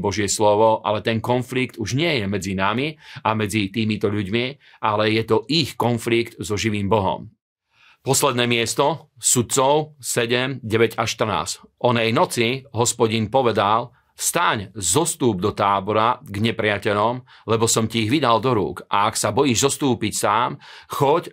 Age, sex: 40-59, male